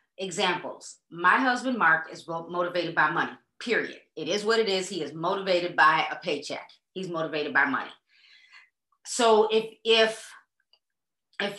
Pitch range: 180-225 Hz